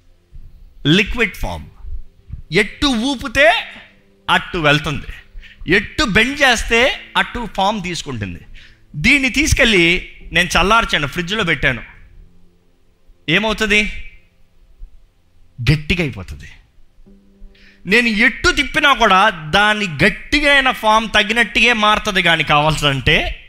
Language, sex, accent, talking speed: Telugu, male, native, 80 wpm